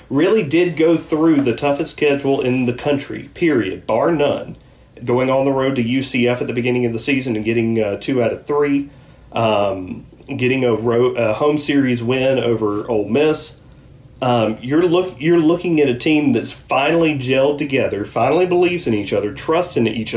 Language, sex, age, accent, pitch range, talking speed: English, male, 40-59, American, 120-155 Hz, 185 wpm